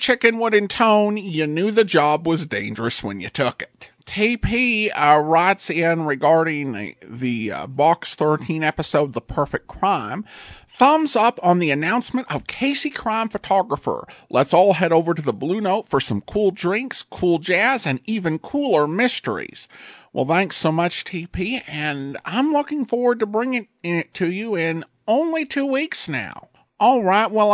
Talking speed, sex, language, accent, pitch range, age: 170 wpm, male, English, American, 155-230 Hz, 50-69